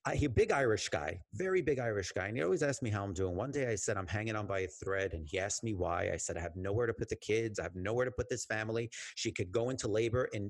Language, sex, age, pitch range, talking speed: English, male, 40-59, 105-155 Hz, 310 wpm